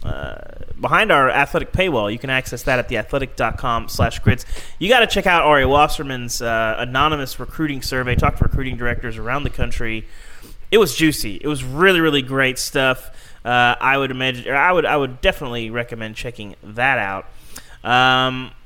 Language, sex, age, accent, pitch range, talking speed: English, male, 30-49, American, 120-160 Hz, 165 wpm